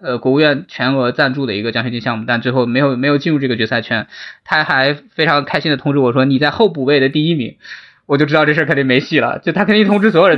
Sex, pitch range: male, 125-160 Hz